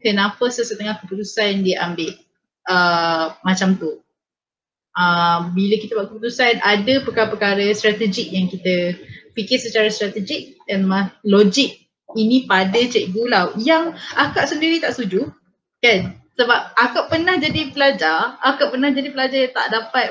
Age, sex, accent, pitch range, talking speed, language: 20-39, female, Malaysian, 210-295 Hz, 135 wpm, Indonesian